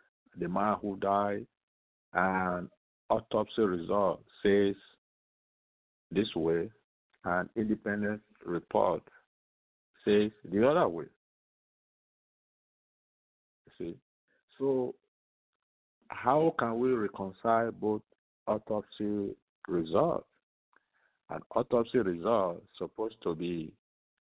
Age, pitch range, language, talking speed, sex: 50-69, 90-115 Hz, English, 80 wpm, male